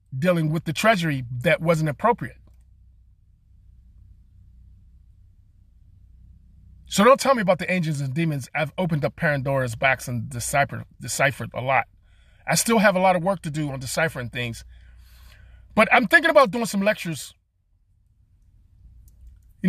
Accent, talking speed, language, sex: American, 140 wpm, English, male